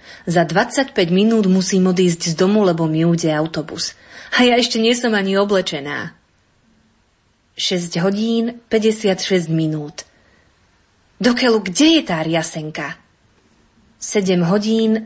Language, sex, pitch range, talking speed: Slovak, female, 170-230 Hz, 110 wpm